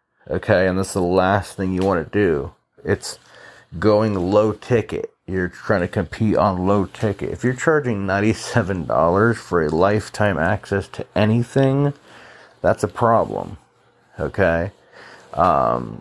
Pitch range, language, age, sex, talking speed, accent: 90-110 Hz, English, 40-59, male, 140 wpm, American